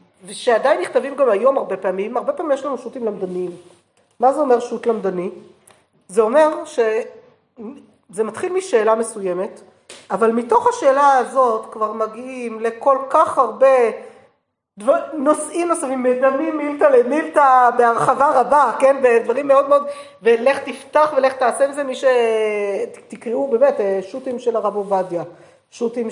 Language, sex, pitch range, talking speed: Hebrew, female, 215-275 Hz, 135 wpm